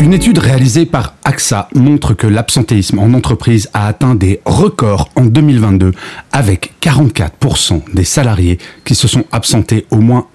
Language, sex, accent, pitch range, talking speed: French, male, French, 105-145 Hz, 150 wpm